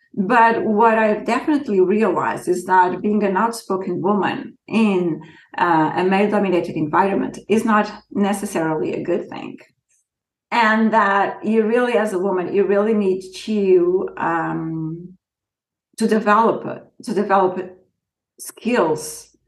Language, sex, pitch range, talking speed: English, female, 180-220 Hz, 120 wpm